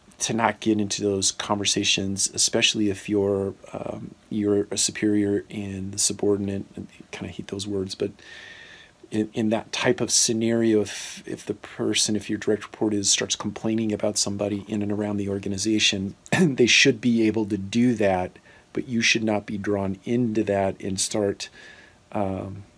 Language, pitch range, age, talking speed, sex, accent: English, 100-110 Hz, 40-59, 170 wpm, male, American